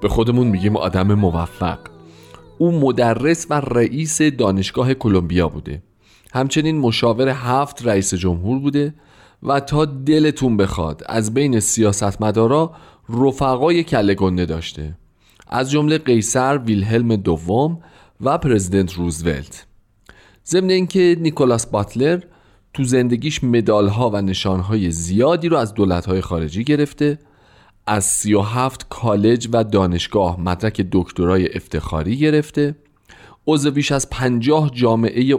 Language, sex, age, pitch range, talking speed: Persian, male, 40-59, 100-140 Hz, 110 wpm